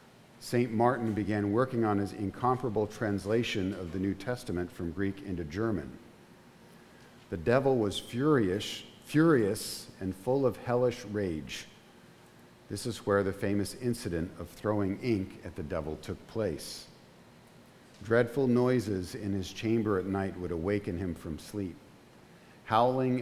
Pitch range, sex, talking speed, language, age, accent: 90-115 Hz, male, 135 wpm, English, 50-69, American